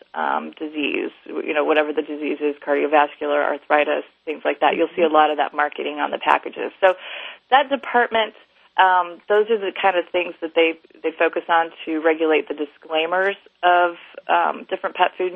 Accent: American